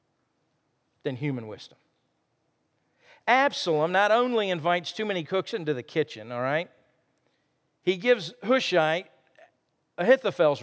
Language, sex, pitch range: English, male, 145-205 Hz